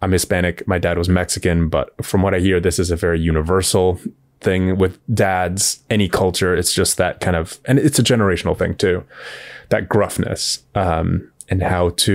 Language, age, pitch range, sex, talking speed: English, 20-39, 85-100 Hz, male, 190 wpm